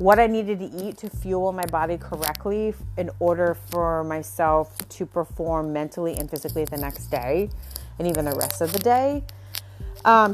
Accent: American